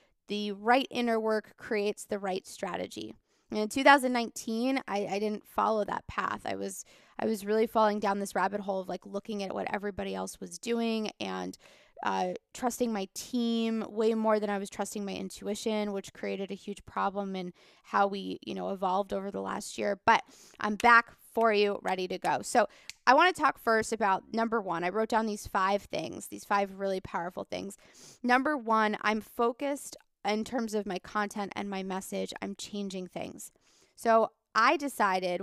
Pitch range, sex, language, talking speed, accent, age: 195-225 Hz, female, English, 185 wpm, American, 20-39